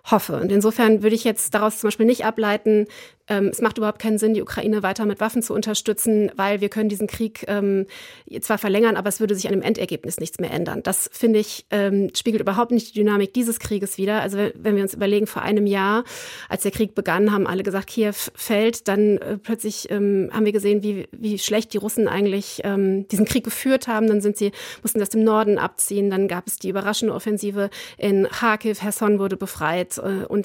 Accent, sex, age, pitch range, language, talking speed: German, female, 30-49, 200-220 Hz, German, 215 wpm